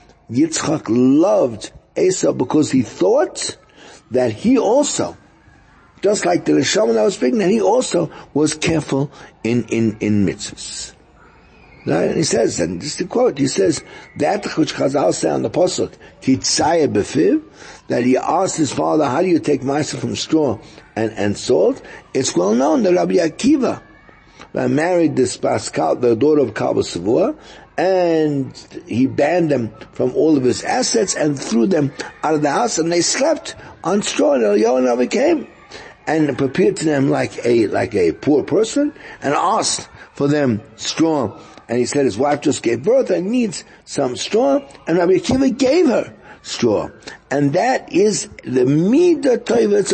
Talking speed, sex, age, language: 160 wpm, male, 60-79, English